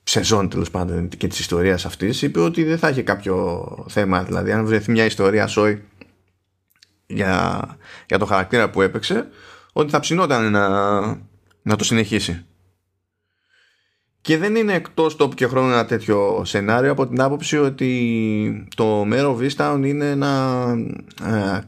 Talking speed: 145 wpm